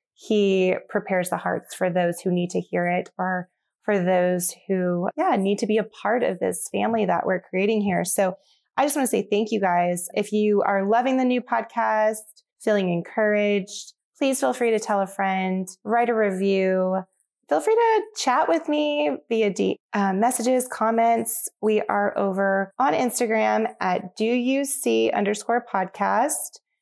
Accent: American